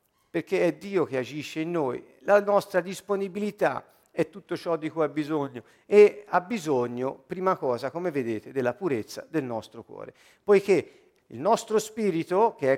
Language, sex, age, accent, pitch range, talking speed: Italian, male, 50-69, native, 155-235 Hz, 165 wpm